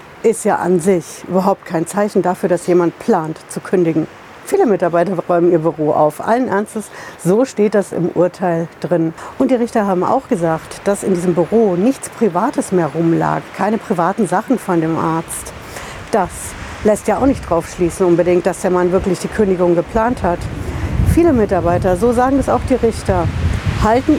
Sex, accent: female, German